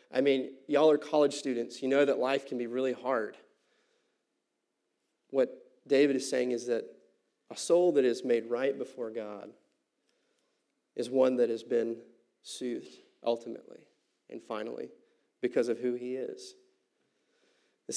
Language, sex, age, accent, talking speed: English, male, 30-49, American, 145 wpm